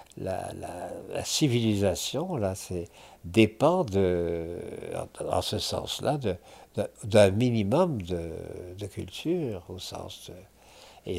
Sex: male